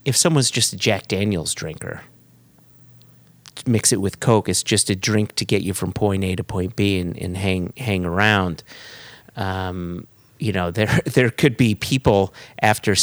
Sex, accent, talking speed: male, American, 175 wpm